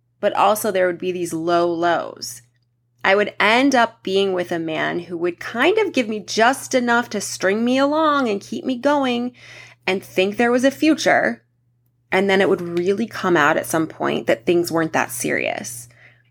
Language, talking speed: English, 195 wpm